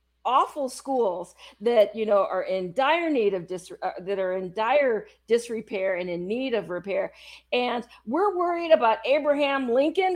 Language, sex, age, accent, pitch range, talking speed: English, female, 50-69, American, 220-320 Hz, 160 wpm